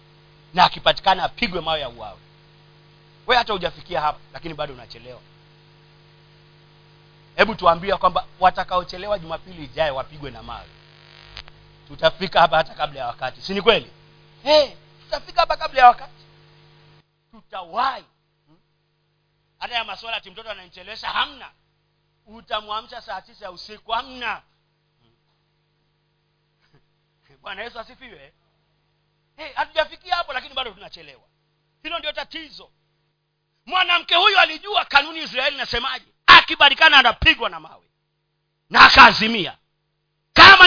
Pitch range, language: 155-230 Hz, Swahili